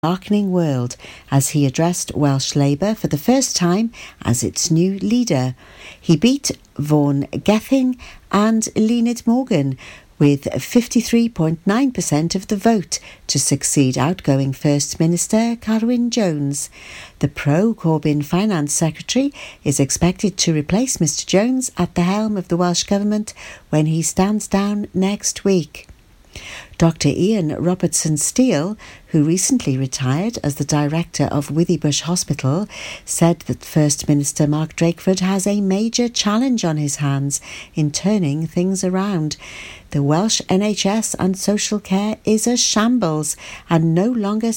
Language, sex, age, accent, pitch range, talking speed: English, female, 60-79, British, 150-210 Hz, 130 wpm